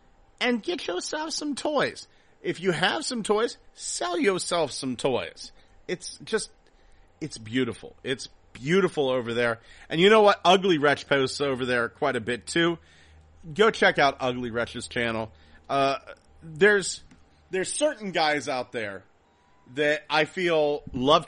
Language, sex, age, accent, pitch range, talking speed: English, male, 40-59, American, 115-155 Hz, 145 wpm